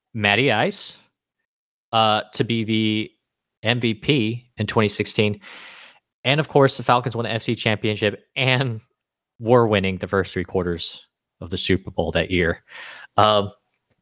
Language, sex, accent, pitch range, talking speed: English, male, American, 95-115 Hz, 135 wpm